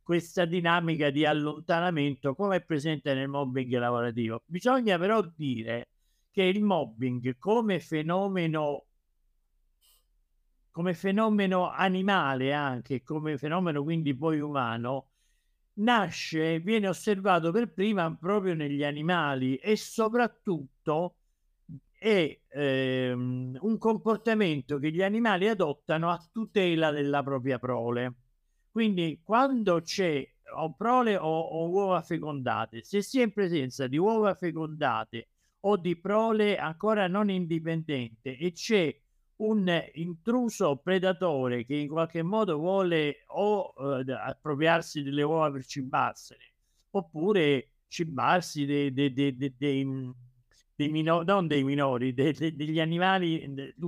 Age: 50-69